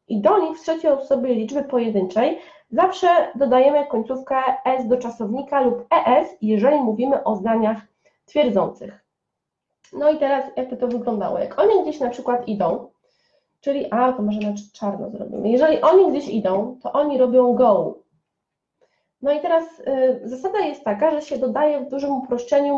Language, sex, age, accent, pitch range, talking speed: Polish, female, 20-39, native, 235-300 Hz, 160 wpm